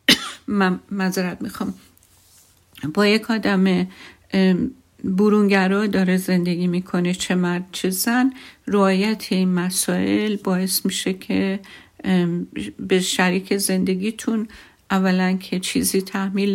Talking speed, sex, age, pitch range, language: 100 wpm, female, 50-69, 185-200 Hz, Persian